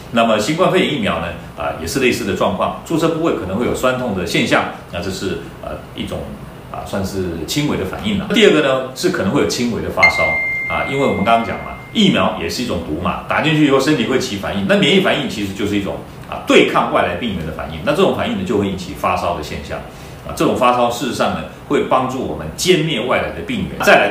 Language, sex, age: Chinese, male, 40-59